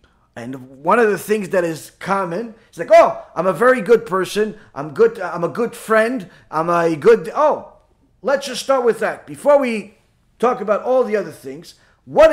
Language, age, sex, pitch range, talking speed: English, 30-49, male, 170-235 Hz, 195 wpm